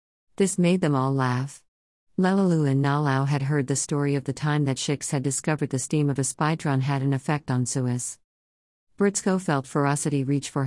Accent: American